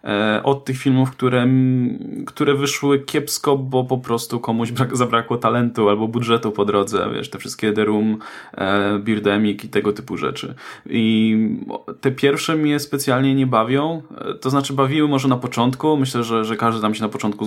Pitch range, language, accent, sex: 110-140 Hz, Polish, native, male